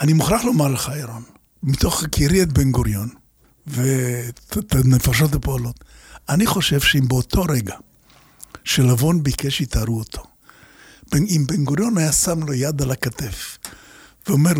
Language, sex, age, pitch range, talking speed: Hebrew, male, 60-79, 130-175 Hz, 130 wpm